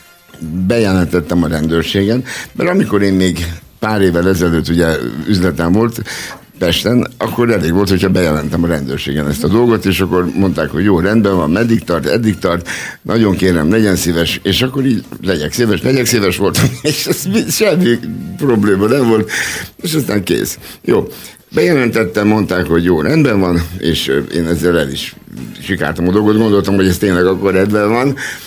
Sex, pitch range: male, 85-105 Hz